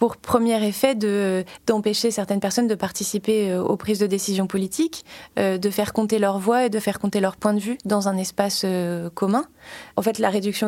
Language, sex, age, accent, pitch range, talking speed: French, female, 20-39, French, 190-215 Hz, 210 wpm